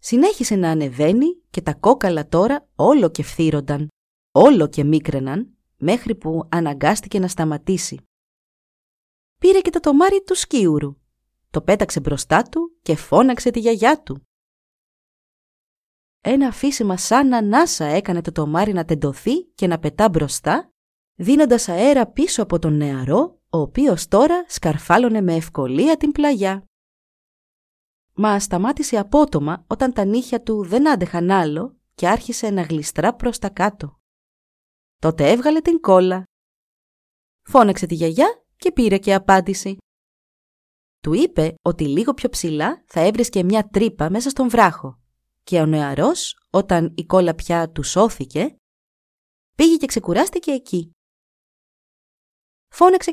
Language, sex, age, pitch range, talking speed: Greek, female, 30-49, 160-260 Hz, 130 wpm